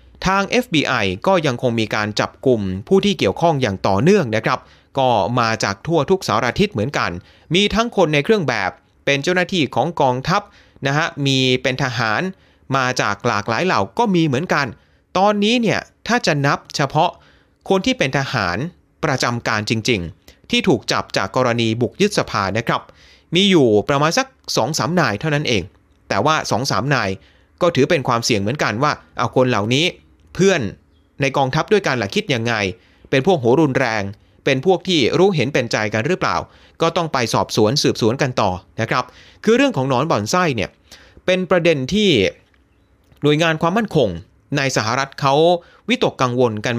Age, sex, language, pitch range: 30-49, male, Thai, 110-165 Hz